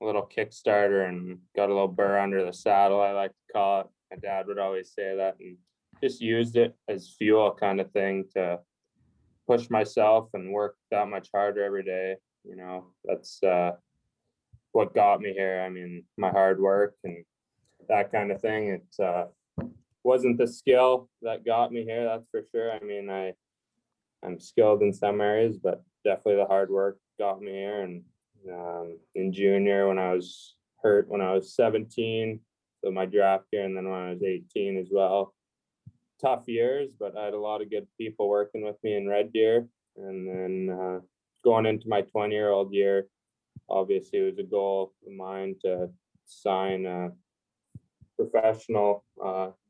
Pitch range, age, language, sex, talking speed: 95-105 Hz, 20-39, English, male, 180 wpm